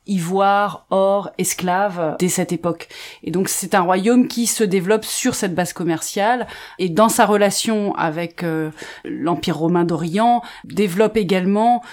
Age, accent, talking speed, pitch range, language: 30-49, French, 145 wpm, 165-210 Hz, French